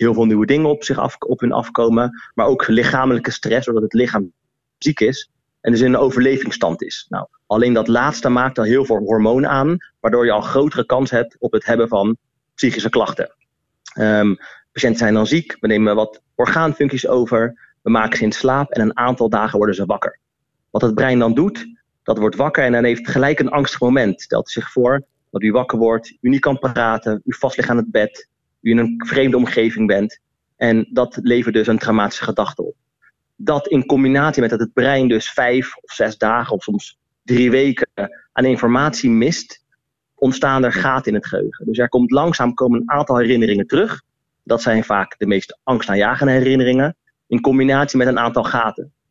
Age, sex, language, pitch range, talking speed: 30-49, male, Dutch, 115-135 Hz, 200 wpm